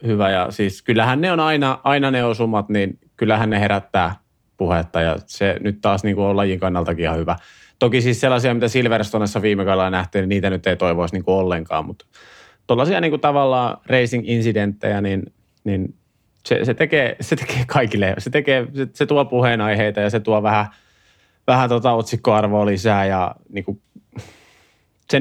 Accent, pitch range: native, 100-125 Hz